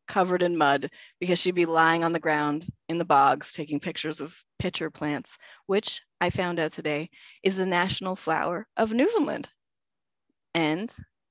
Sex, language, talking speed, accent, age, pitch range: female, English, 160 wpm, American, 20-39, 165-225 Hz